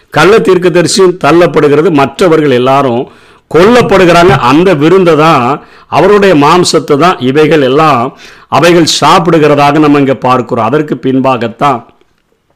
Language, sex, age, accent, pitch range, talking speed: Tamil, male, 50-69, native, 130-170 Hz, 95 wpm